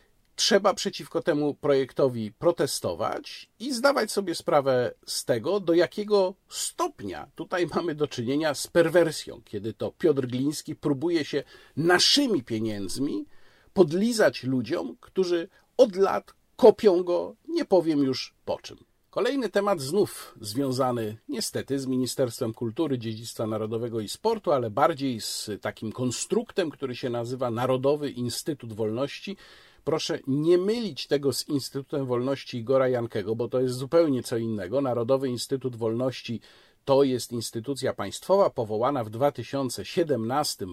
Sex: male